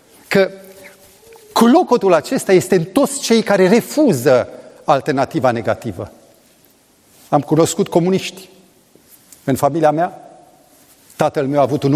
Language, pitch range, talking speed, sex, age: Romanian, 150-200 Hz, 110 wpm, male, 40-59